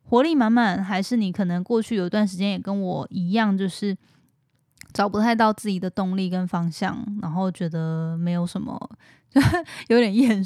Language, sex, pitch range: Chinese, female, 180-220 Hz